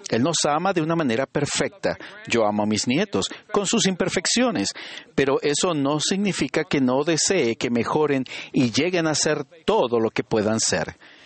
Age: 50-69